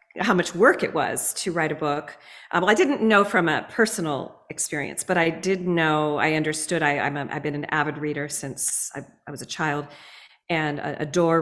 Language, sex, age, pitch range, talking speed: English, female, 40-59, 150-185 Hz, 215 wpm